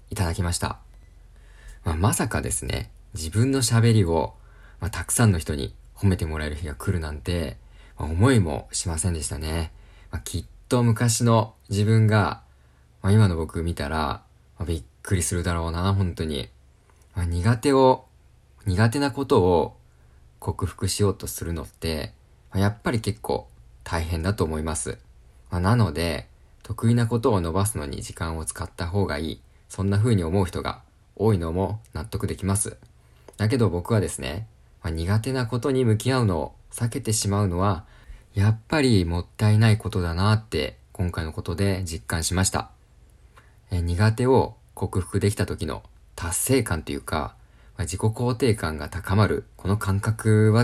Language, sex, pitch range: Japanese, male, 85-110 Hz